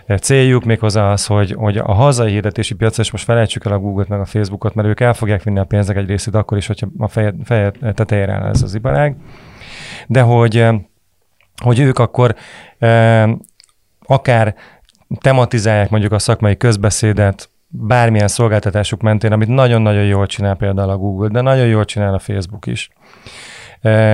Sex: male